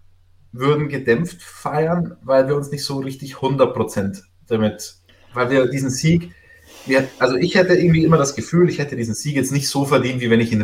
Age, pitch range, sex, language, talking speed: 30-49, 105-135 Hz, male, German, 195 wpm